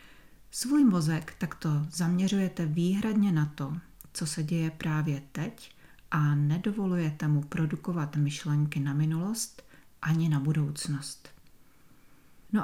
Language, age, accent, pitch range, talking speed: Czech, 40-59, native, 150-175 Hz, 110 wpm